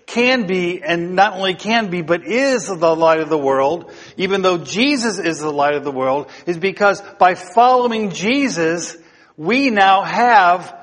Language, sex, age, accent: English, male, 50-69, American